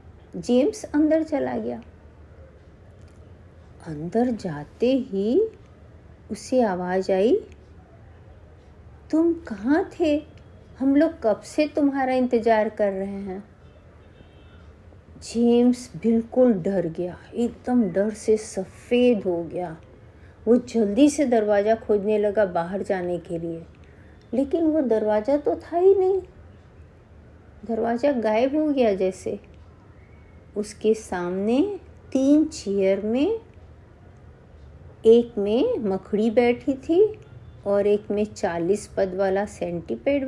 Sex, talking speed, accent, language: female, 105 wpm, native, Hindi